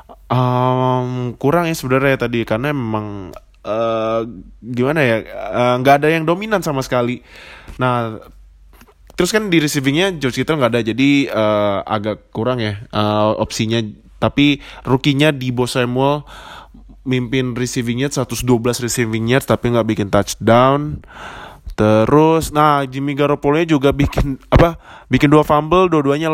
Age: 20-39